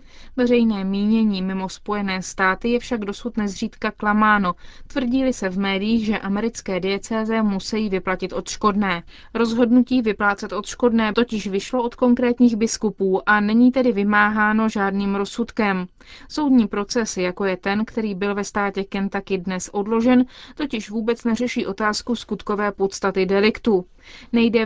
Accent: native